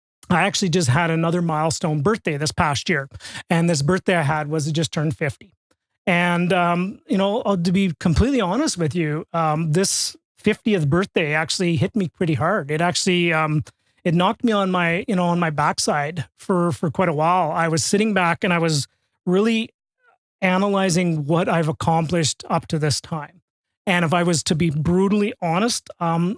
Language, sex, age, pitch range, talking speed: English, male, 30-49, 160-190 Hz, 185 wpm